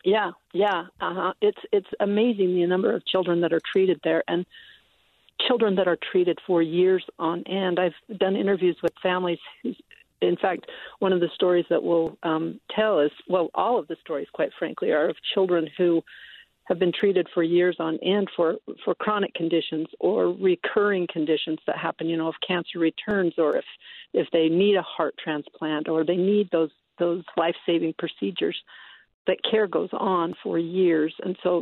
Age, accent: 50-69, American